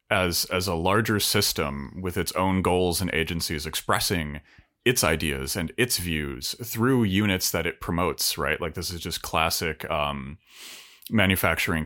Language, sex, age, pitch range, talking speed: English, male, 30-49, 80-100 Hz, 150 wpm